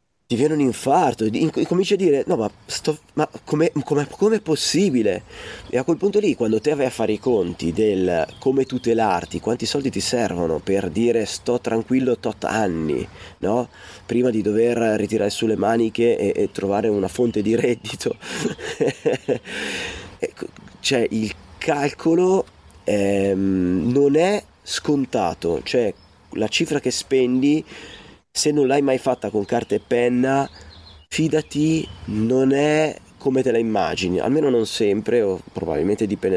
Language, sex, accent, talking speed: Italian, male, native, 140 wpm